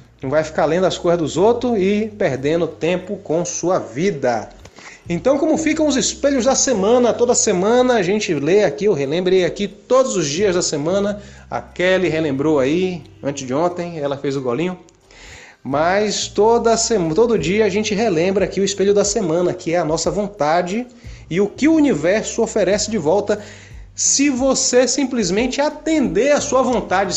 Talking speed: 170 wpm